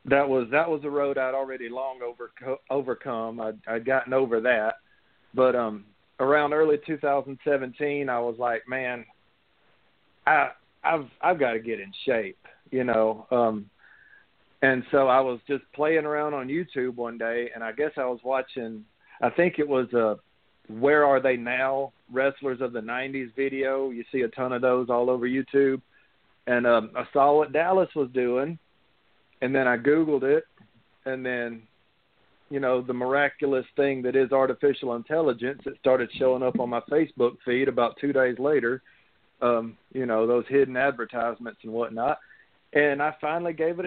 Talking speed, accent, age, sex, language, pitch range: 170 wpm, American, 40-59, male, English, 120-145 Hz